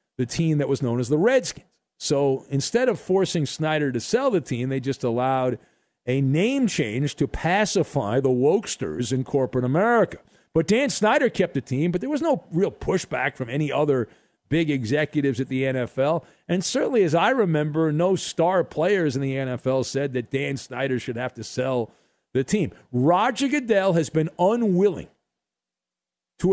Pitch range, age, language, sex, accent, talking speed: 140-205 Hz, 50-69, English, male, American, 175 wpm